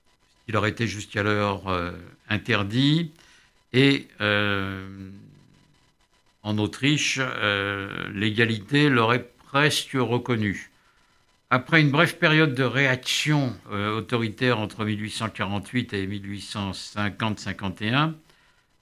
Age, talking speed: 60-79, 75 wpm